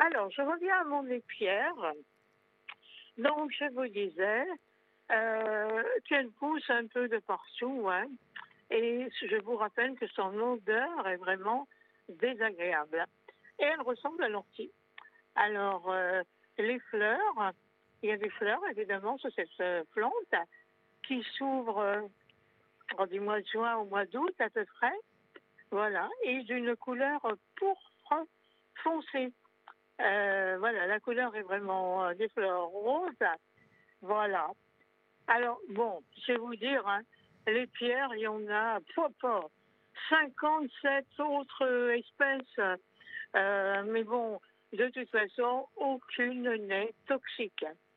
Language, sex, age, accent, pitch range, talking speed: French, female, 60-79, French, 210-285 Hz, 130 wpm